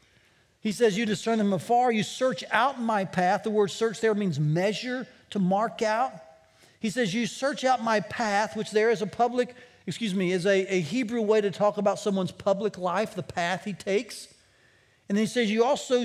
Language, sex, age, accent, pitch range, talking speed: English, male, 40-59, American, 185-240 Hz, 205 wpm